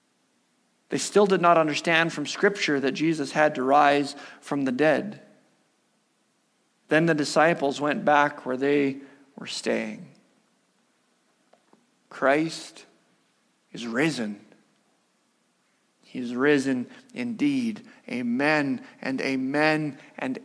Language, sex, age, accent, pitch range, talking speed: English, male, 40-59, American, 150-225 Hz, 105 wpm